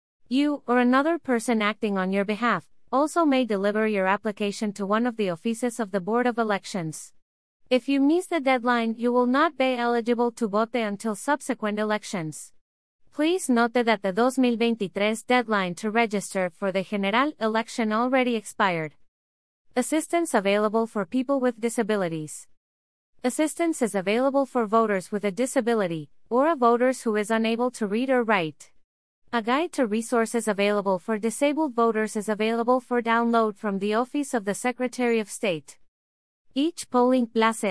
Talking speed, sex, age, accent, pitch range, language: 160 wpm, female, 30-49, American, 205-250 Hz, English